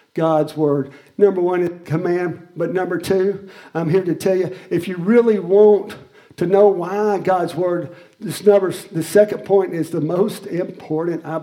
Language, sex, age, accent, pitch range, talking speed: English, male, 50-69, American, 165-225 Hz, 175 wpm